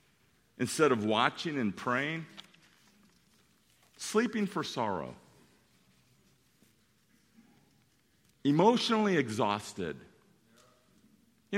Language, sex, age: English, male, 50-69